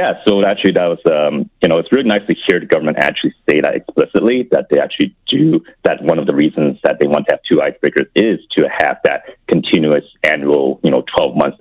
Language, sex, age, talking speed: English, male, 30-49, 235 wpm